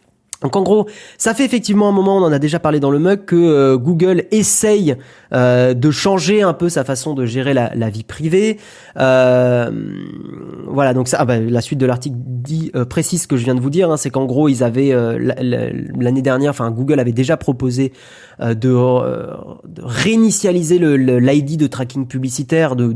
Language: French